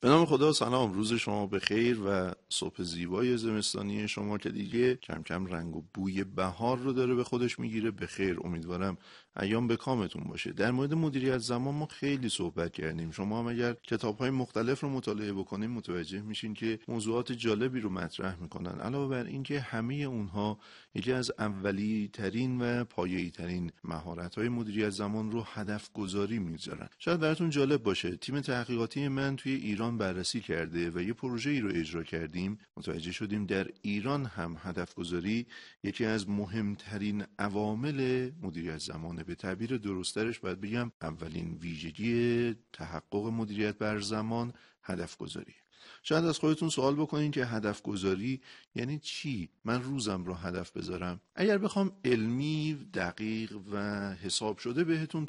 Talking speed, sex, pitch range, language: 155 wpm, male, 95-125 Hz, Persian